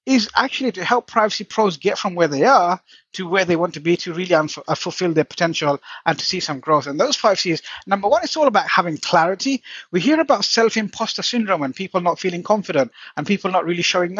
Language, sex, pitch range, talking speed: English, male, 155-225 Hz, 230 wpm